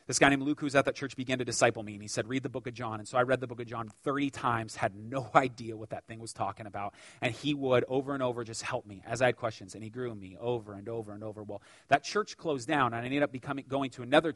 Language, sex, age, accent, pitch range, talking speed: English, male, 30-49, American, 140-230 Hz, 315 wpm